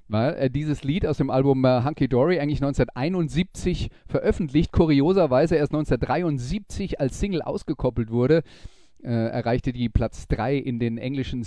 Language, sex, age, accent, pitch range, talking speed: German, male, 30-49, German, 125-155 Hz, 145 wpm